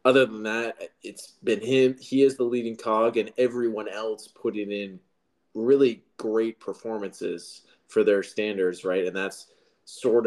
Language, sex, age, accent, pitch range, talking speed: English, male, 20-39, American, 100-120 Hz, 150 wpm